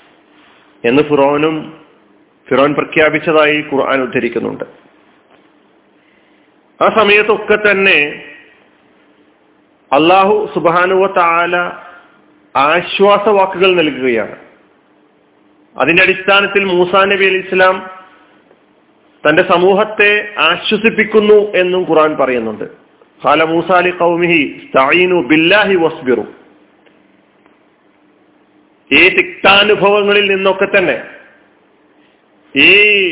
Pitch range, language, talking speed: 160-210 Hz, Malayalam, 55 wpm